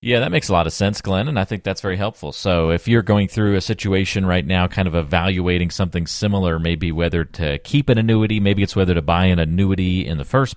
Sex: male